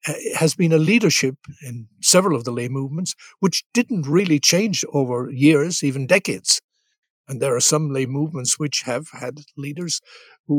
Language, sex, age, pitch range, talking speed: English, male, 60-79, 140-185 Hz, 165 wpm